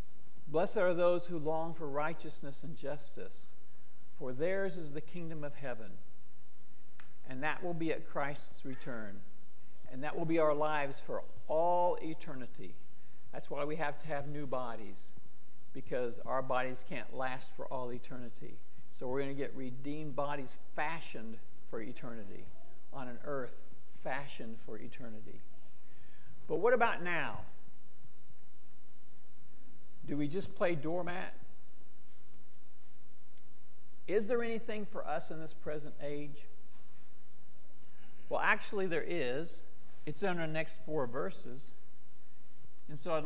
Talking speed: 130 wpm